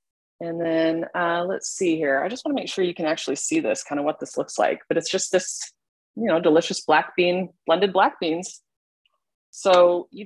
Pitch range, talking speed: 160-205 Hz, 210 wpm